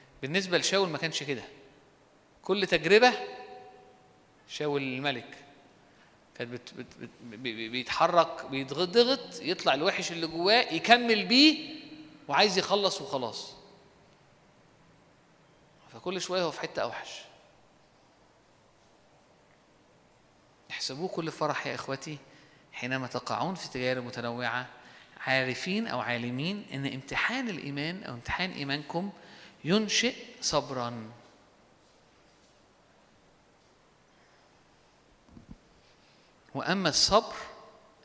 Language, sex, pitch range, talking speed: Arabic, male, 135-195 Hz, 85 wpm